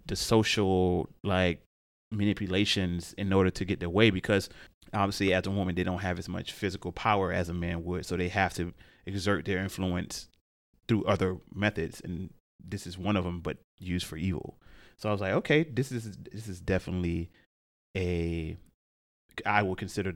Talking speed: 180 wpm